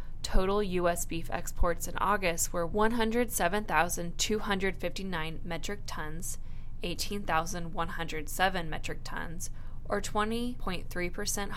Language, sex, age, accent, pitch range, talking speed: English, female, 10-29, American, 170-200 Hz, 80 wpm